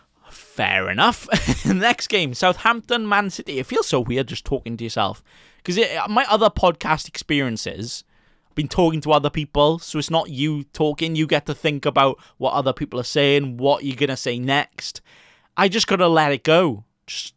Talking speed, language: 190 wpm, English